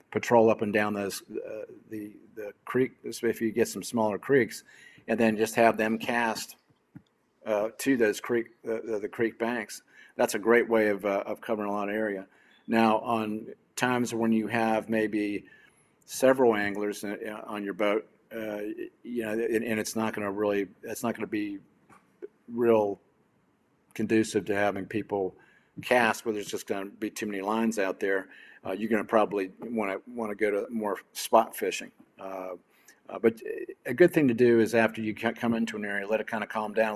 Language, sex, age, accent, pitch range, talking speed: English, male, 50-69, American, 105-115 Hz, 195 wpm